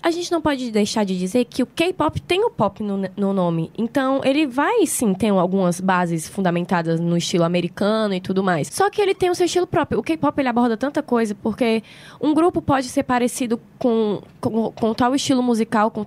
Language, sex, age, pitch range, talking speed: Portuguese, female, 10-29, 200-275 Hz, 215 wpm